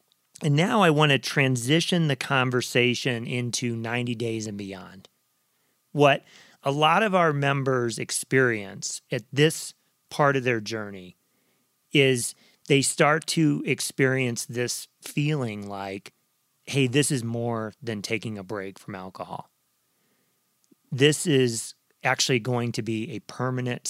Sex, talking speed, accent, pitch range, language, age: male, 130 wpm, American, 115-145 Hz, English, 40-59